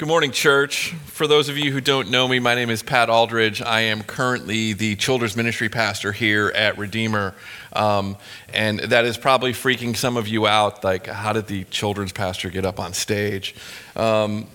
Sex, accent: male, American